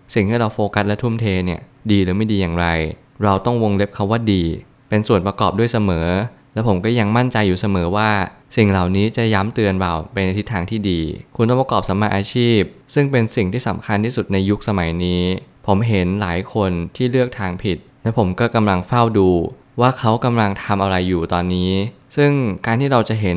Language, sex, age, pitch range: Thai, male, 20-39, 95-115 Hz